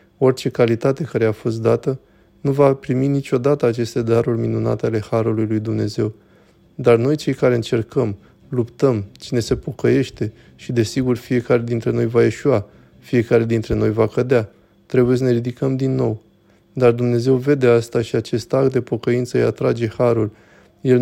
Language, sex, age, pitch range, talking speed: Romanian, male, 20-39, 115-130 Hz, 165 wpm